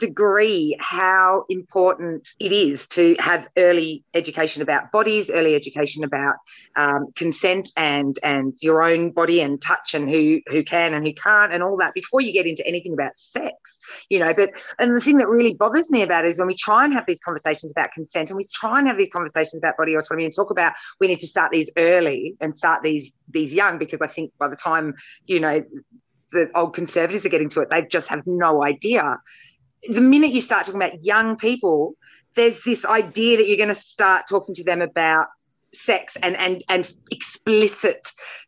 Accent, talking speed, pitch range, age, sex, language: Australian, 205 wpm, 160-220 Hz, 30-49, female, English